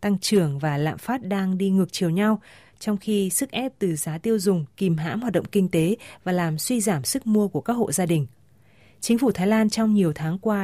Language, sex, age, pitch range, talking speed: Vietnamese, female, 20-39, 170-215 Hz, 245 wpm